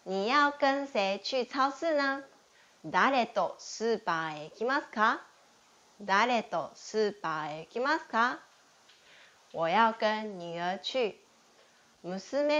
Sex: female